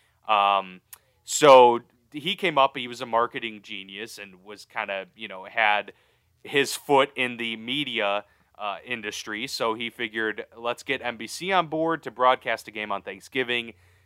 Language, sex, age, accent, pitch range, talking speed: English, male, 30-49, American, 105-130 Hz, 160 wpm